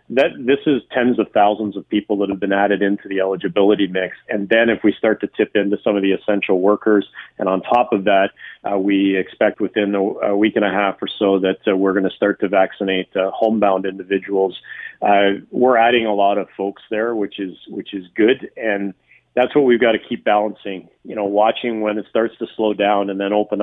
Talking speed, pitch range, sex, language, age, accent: 225 wpm, 100-110 Hz, male, English, 40-59, American